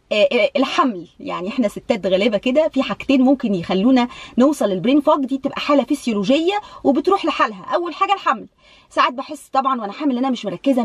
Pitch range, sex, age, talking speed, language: 205-295 Hz, female, 20-39, 165 wpm, Arabic